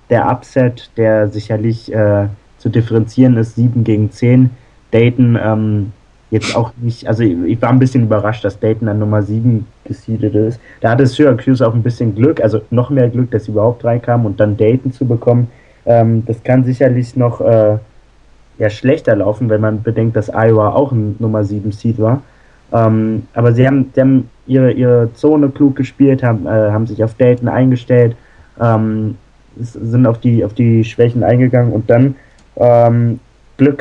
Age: 20-39